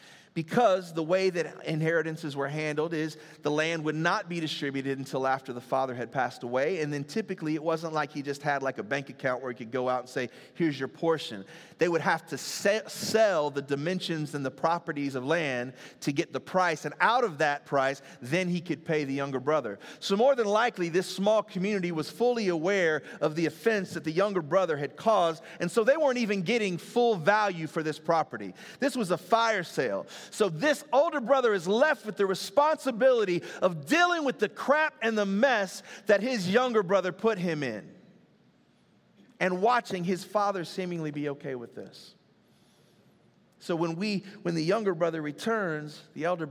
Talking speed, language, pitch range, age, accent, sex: 195 wpm, English, 145-205 Hz, 30-49, American, male